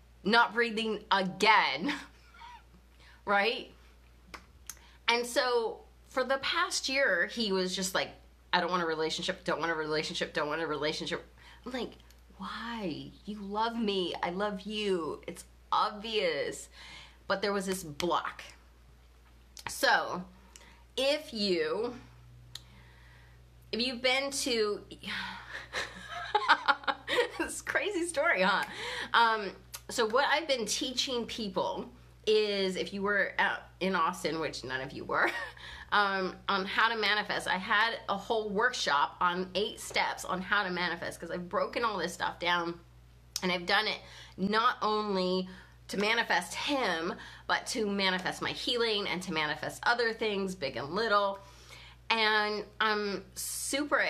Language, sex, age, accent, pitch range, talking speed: English, female, 30-49, American, 165-230 Hz, 135 wpm